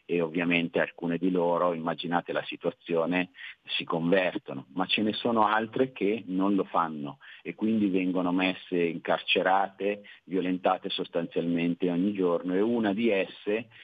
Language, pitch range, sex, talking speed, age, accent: Italian, 90-105 Hz, male, 140 wpm, 40-59, native